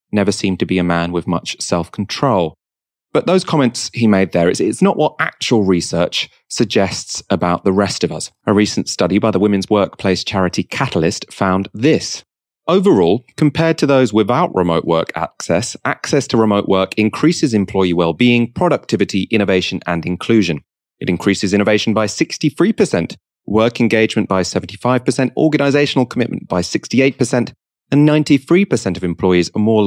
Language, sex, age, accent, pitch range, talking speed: English, male, 30-49, British, 90-125 Hz, 155 wpm